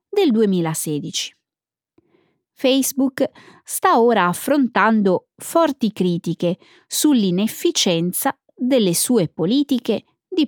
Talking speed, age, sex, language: 75 wpm, 20-39, female, Italian